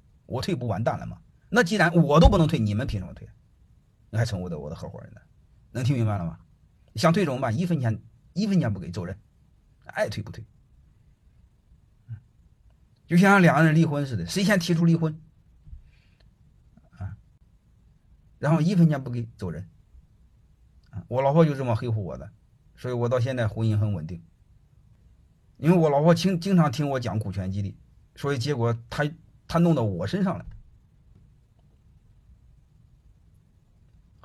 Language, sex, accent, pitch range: Chinese, male, native, 105-165 Hz